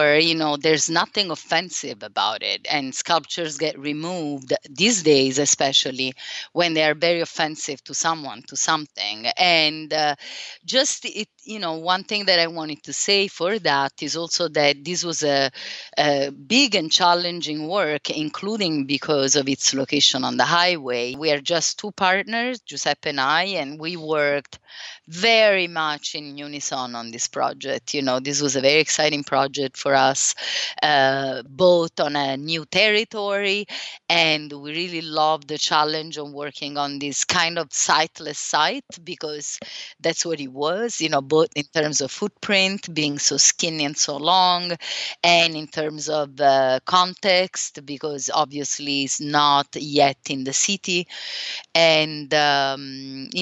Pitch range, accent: 145-175 Hz, Italian